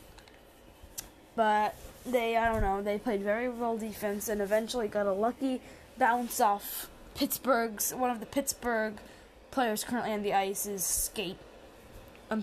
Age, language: 10-29, English